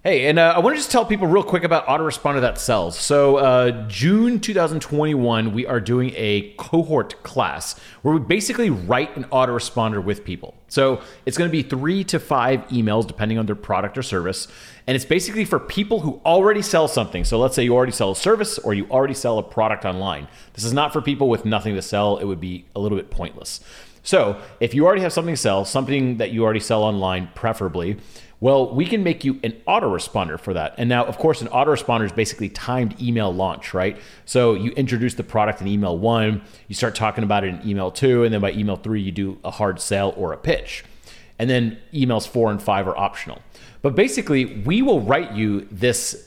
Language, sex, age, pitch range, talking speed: English, male, 30-49, 105-140 Hz, 215 wpm